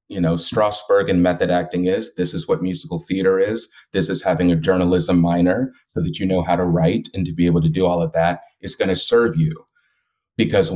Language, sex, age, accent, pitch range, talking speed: English, male, 30-49, American, 85-110 Hz, 230 wpm